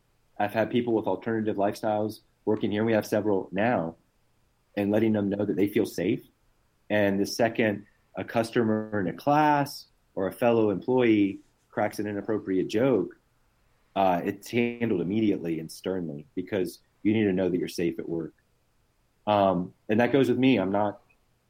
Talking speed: 165 wpm